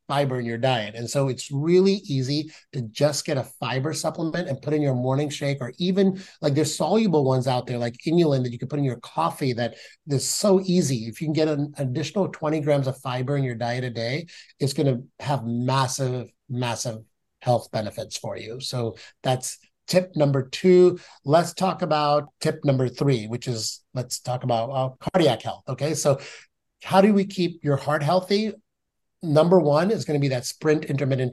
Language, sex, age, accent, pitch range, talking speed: English, male, 30-49, American, 130-155 Hz, 195 wpm